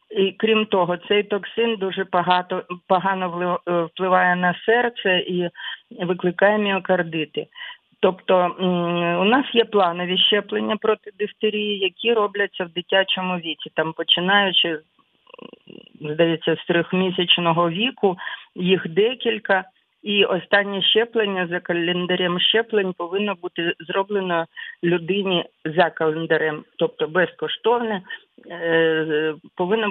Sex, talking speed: female, 100 wpm